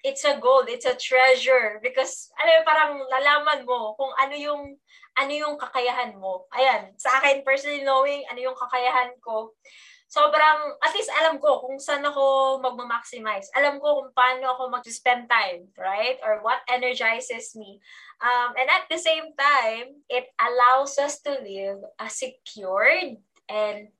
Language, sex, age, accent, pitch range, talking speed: Filipino, female, 20-39, native, 225-285 Hz, 160 wpm